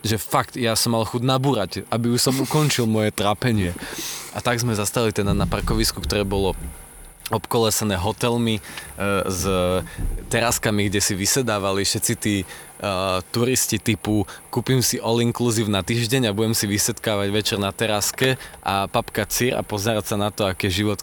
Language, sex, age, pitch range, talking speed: Slovak, male, 20-39, 95-115 Hz, 170 wpm